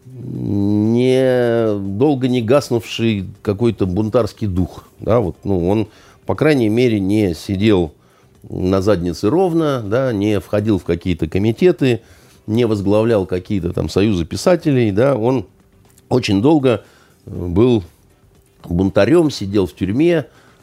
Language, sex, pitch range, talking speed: Russian, male, 90-120 Hz, 115 wpm